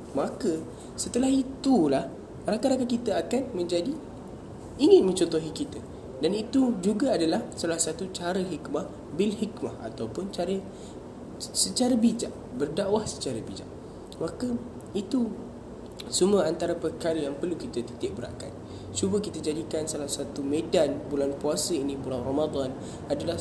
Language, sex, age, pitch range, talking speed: Malay, male, 10-29, 140-195 Hz, 125 wpm